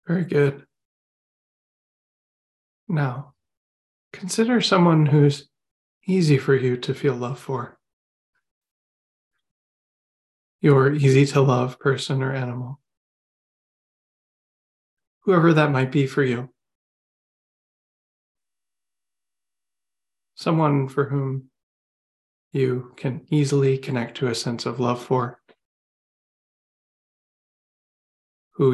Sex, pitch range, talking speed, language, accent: male, 115-140 Hz, 85 wpm, English, American